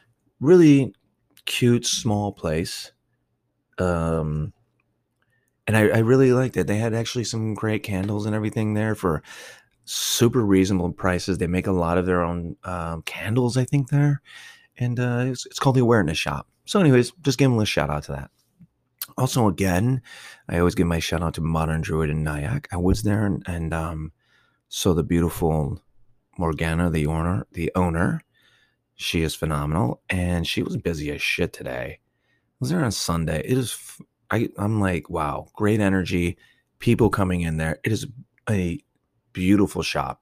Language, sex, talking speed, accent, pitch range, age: English, male, 170 wpm, American, 85-120 Hz, 30-49